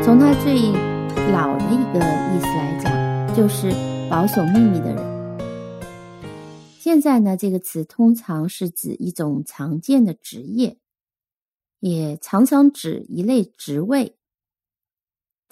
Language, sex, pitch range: Chinese, female, 165-240 Hz